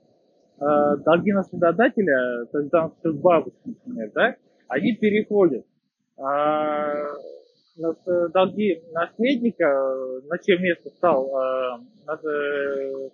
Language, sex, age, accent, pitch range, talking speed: Russian, male, 20-39, native, 145-190 Hz, 80 wpm